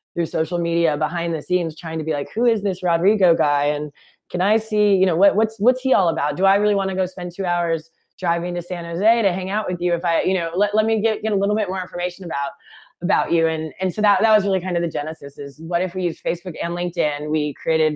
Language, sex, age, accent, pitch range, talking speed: English, female, 20-39, American, 160-195 Hz, 275 wpm